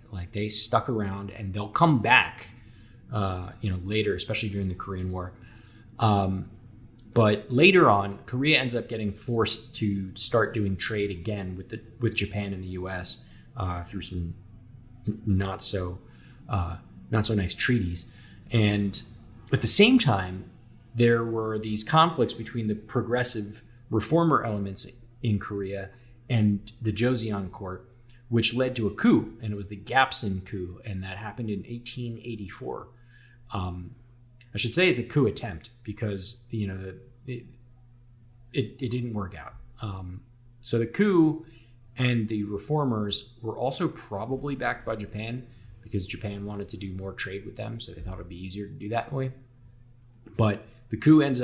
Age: 30-49